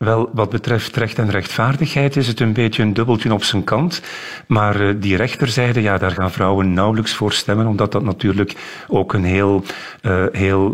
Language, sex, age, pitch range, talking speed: Dutch, male, 50-69, 100-125 Hz, 190 wpm